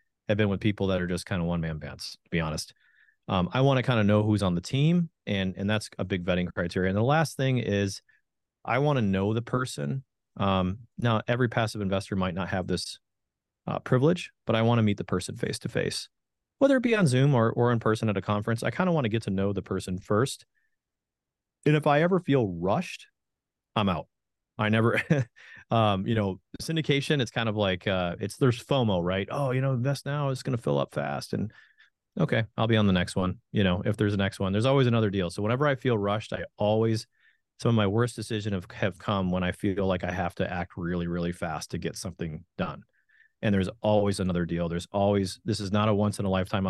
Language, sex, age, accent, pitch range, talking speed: English, male, 30-49, American, 95-120 Hz, 240 wpm